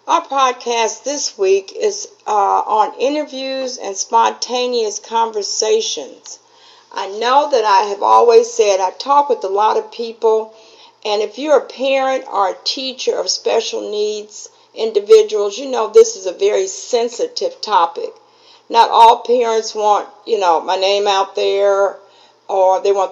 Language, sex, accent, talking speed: English, female, American, 150 wpm